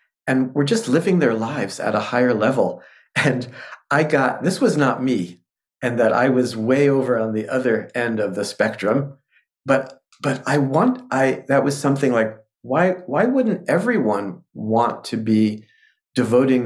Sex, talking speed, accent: male, 170 wpm, American